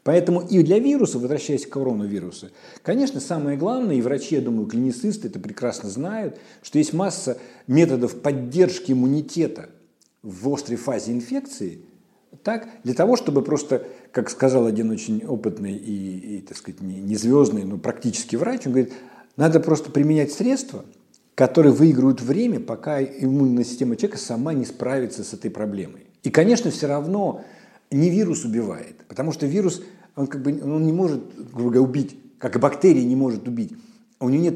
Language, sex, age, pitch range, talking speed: Russian, male, 50-69, 120-175 Hz, 160 wpm